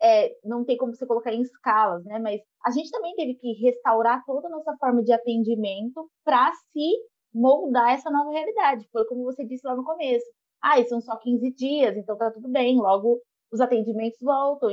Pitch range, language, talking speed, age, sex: 230-295 Hz, Portuguese, 195 wpm, 20-39, female